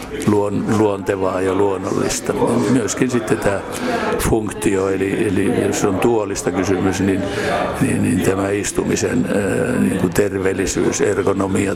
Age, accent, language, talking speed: 60-79, native, Finnish, 110 wpm